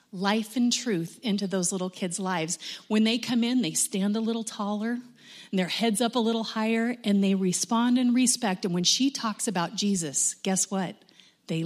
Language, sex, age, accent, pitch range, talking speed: English, female, 30-49, American, 190-235 Hz, 195 wpm